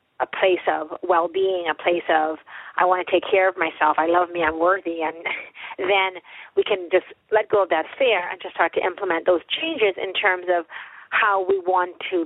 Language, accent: English, American